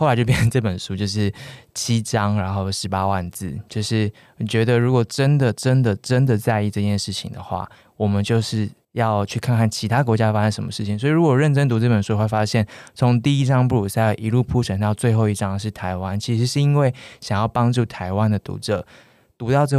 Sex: male